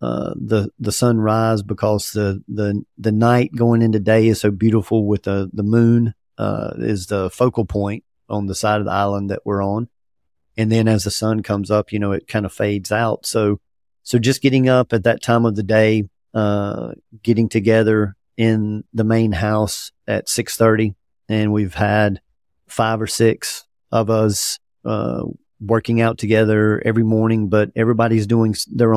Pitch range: 105-115 Hz